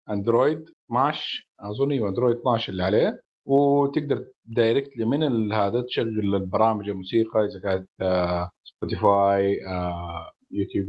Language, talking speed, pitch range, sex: Arabic, 105 wpm, 100-120 Hz, male